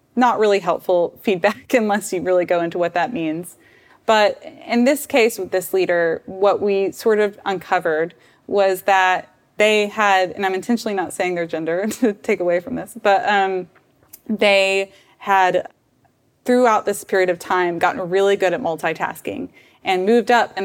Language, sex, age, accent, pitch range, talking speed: English, female, 20-39, American, 175-210 Hz, 170 wpm